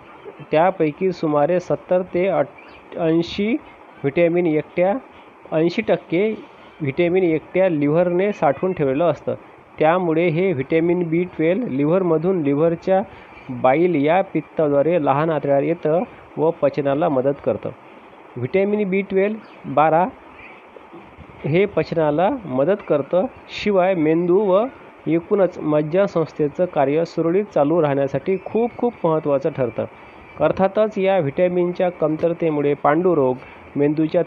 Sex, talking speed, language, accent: male, 95 wpm, Marathi, native